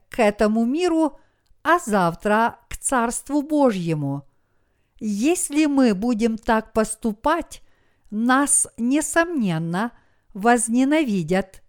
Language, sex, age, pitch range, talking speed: Russian, female, 50-69, 190-265 Hz, 80 wpm